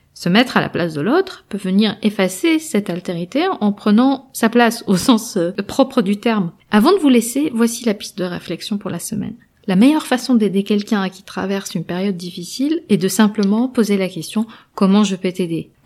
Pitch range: 170-210 Hz